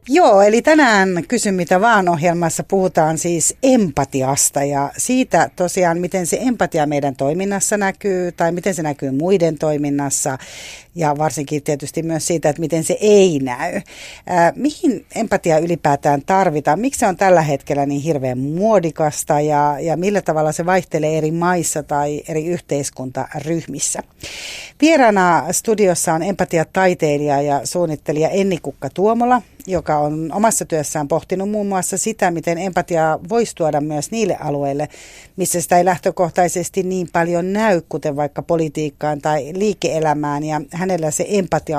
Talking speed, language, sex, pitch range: 140 wpm, Finnish, female, 150-185 Hz